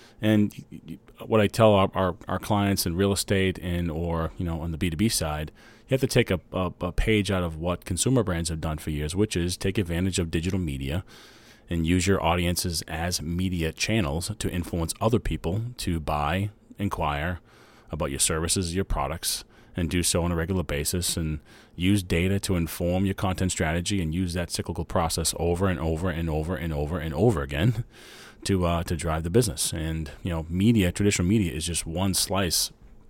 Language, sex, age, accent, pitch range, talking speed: English, male, 30-49, American, 80-100 Hz, 195 wpm